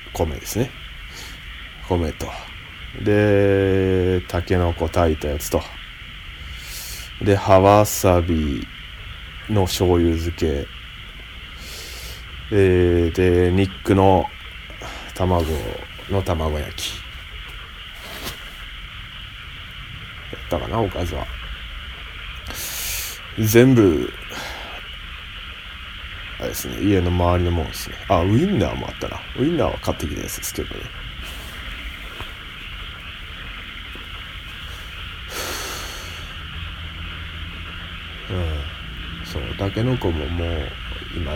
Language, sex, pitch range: Japanese, male, 75-90 Hz